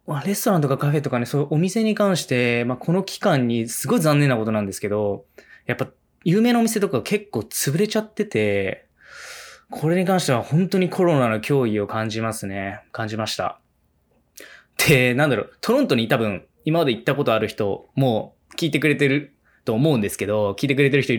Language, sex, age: Japanese, male, 20-39